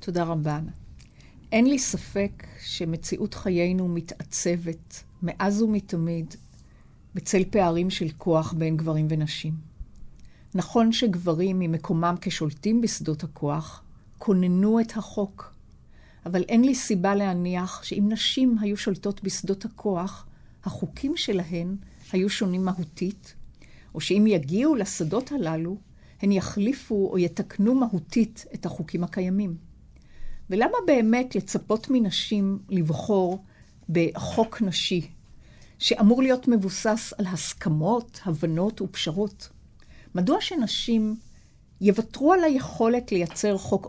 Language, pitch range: Hebrew, 175-220 Hz